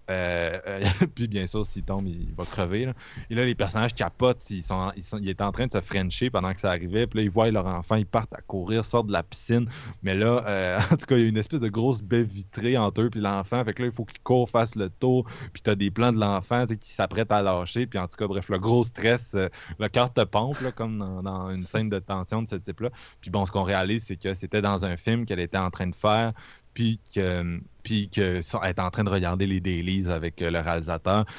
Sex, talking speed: male, 275 wpm